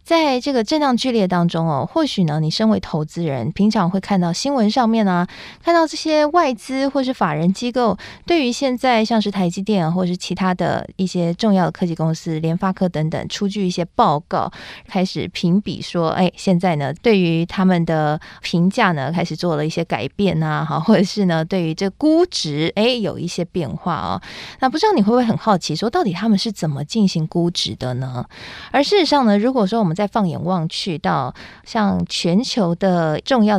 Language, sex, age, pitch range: Chinese, female, 20-39, 170-230 Hz